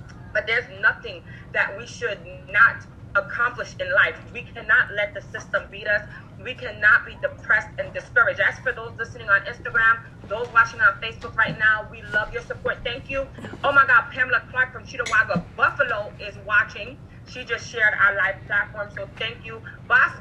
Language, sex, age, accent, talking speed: English, female, 30-49, American, 180 wpm